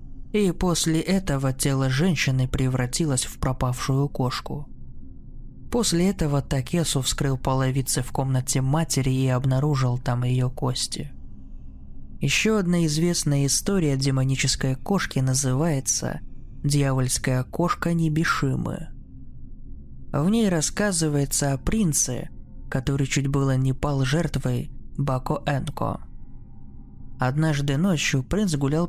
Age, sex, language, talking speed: 20-39, male, Russian, 100 wpm